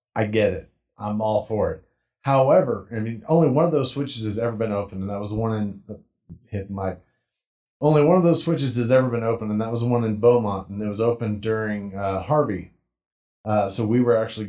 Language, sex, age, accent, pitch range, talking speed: English, male, 30-49, American, 105-130 Hz, 220 wpm